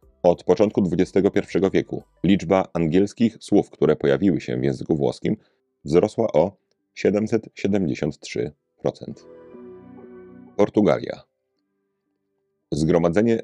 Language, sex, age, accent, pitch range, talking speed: Polish, male, 40-59, native, 75-100 Hz, 80 wpm